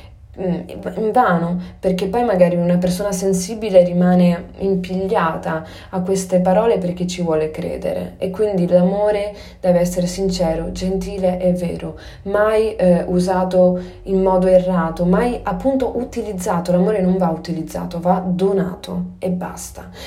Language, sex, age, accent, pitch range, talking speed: Italian, female, 20-39, native, 175-195 Hz, 130 wpm